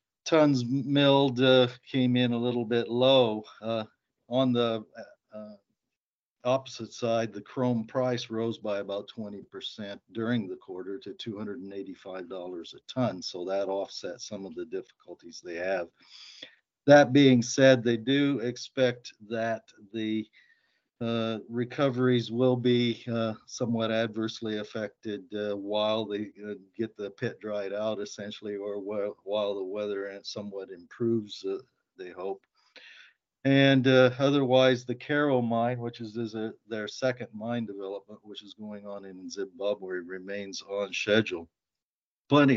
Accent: American